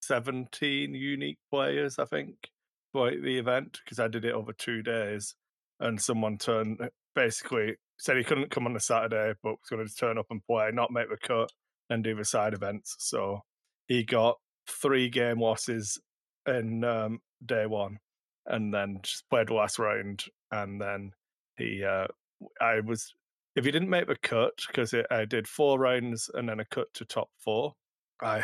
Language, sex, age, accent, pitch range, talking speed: English, male, 30-49, British, 105-120 Hz, 180 wpm